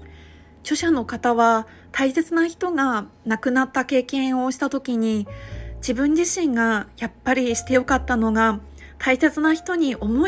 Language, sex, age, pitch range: Japanese, female, 20-39, 230-275 Hz